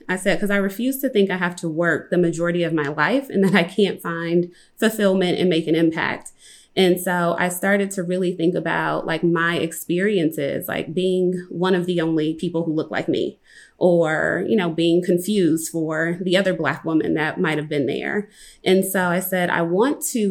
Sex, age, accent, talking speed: female, 20-39, American, 205 wpm